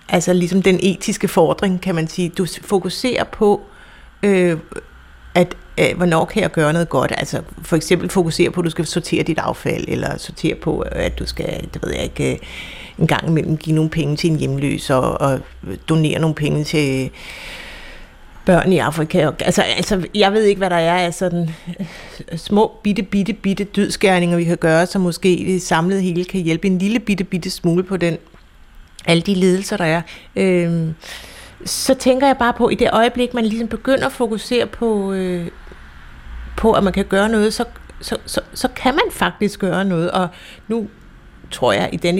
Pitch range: 165-205 Hz